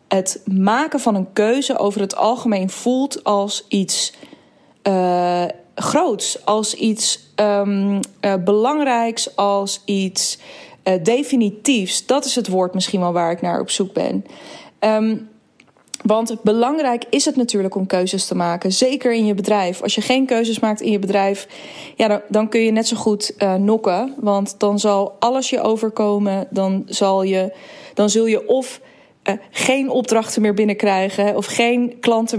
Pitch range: 200-235 Hz